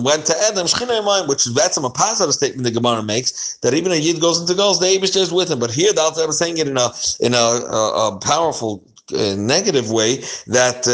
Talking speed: 230 wpm